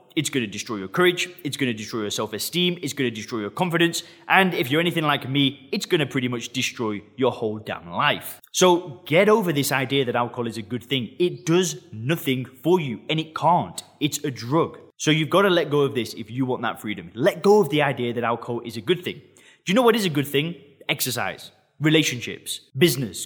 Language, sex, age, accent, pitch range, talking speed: English, male, 20-39, British, 120-170 Hz, 235 wpm